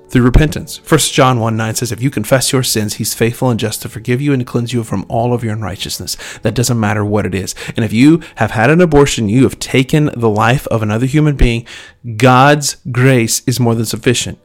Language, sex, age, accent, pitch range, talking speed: English, male, 30-49, American, 110-140 Hz, 230 wpm